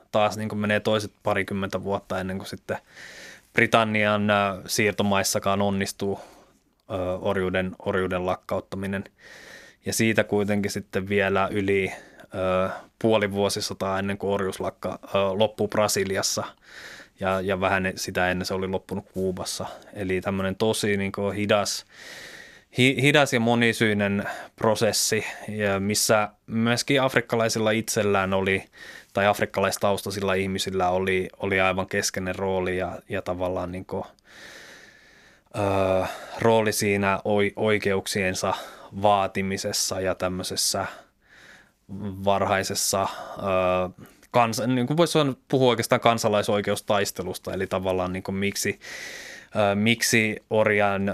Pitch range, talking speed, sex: 95-105 Hz, 100 wpm, male